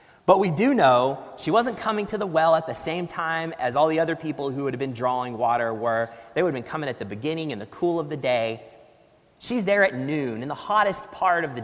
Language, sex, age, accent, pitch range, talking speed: English, male, 30-49, American, 130-190 Hz, 260 wpm